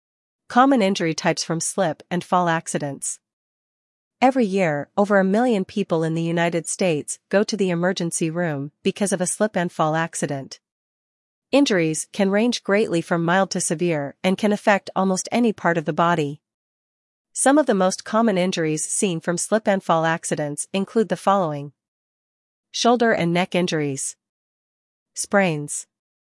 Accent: American